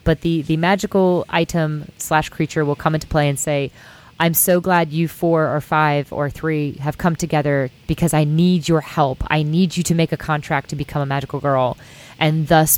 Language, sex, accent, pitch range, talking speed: English, female, American, 145-170 Hz, 205 wpm